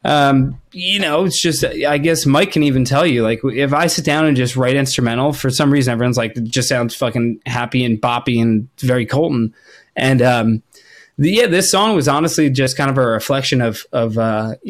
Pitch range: 115-145 Hz